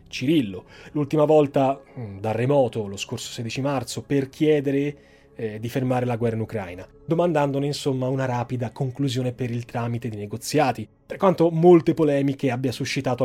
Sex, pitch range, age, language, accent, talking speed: male, 120-150 Hz, 30-49, Italian, native, 155 wpm